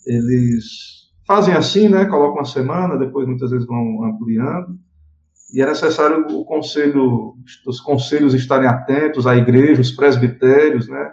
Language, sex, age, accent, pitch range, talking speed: Portuguese, male, 50-69, Brazilian, 125-155 Hz, 140 wpm